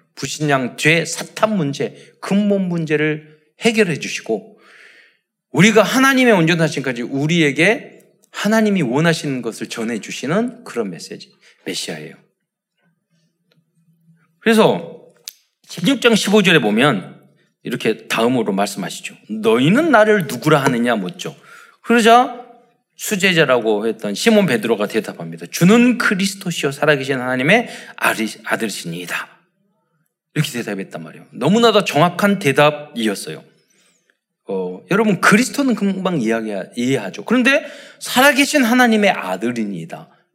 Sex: male